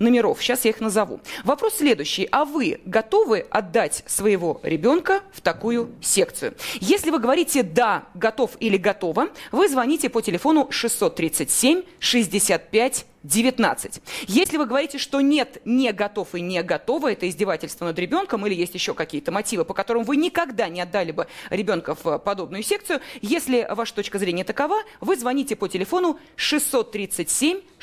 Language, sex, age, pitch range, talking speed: Russian, female, 20-39, 200-280 Hz, 150 wpm